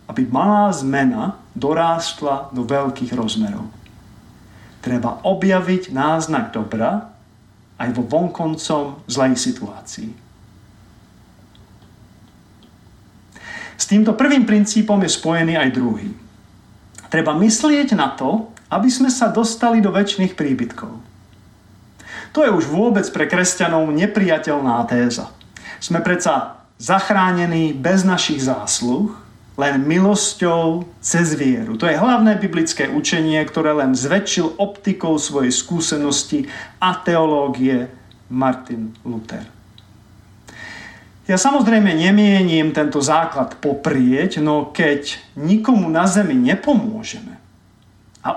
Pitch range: 120-200 Hz